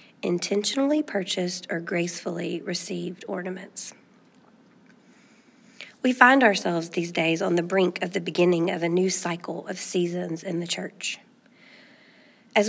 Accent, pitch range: American, 185-220 Hz